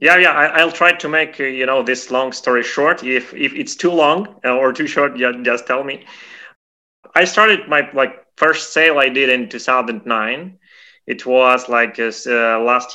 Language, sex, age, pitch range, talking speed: English, male, 20-39, 110-135 Hz, 185 wpm